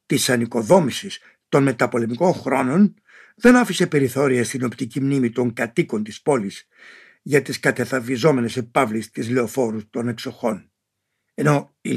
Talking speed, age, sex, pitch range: 125 wpm, 60-79, male, 120-175 Hz